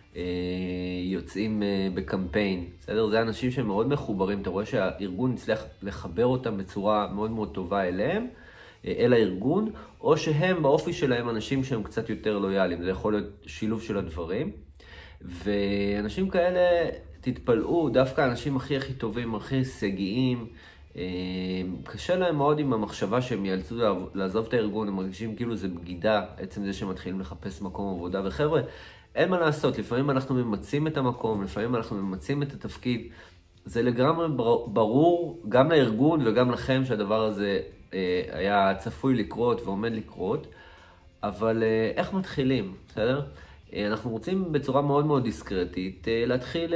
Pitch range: 95-130 Hz